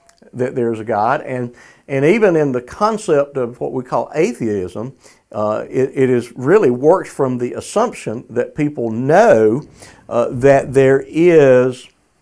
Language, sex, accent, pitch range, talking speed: English, male, American, 115-135 Hz, 155 wpm